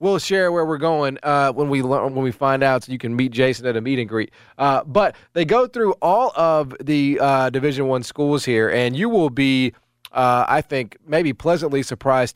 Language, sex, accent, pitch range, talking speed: English, male, American, 120-145 Hz, 225 wpm